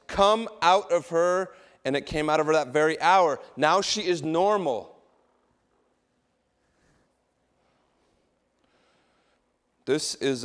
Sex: male